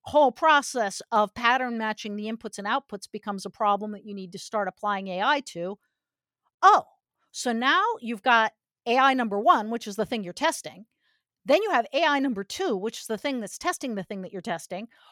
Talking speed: 200 wpm